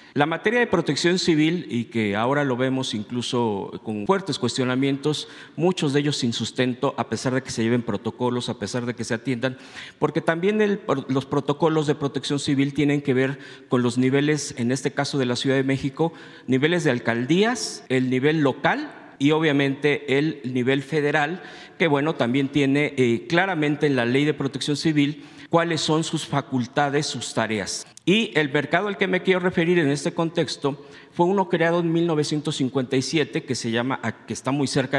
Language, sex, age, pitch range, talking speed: Spanish, male, 50-69, 130-155 Hz, 180 wpm